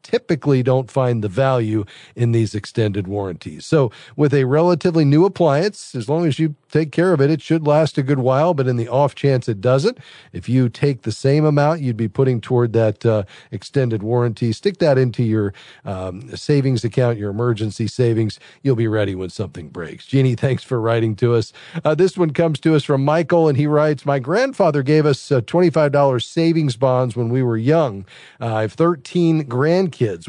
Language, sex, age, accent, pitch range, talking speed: English, male, 40-59, American, 115-150 Hz, 200 wpm